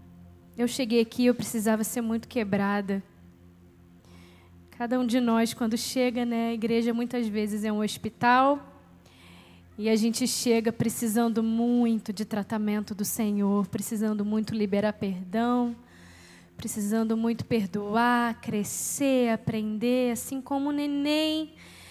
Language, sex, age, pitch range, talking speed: Portuguese, female, 10-29, 190-240 Hz, 125 wpm